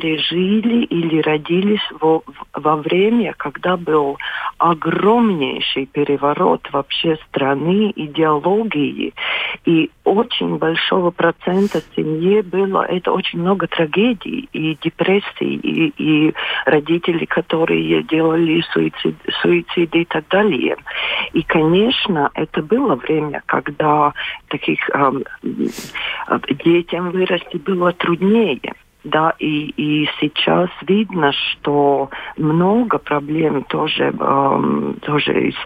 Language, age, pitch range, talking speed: Russian, 50-69, 150-190 Hz, 95 wpm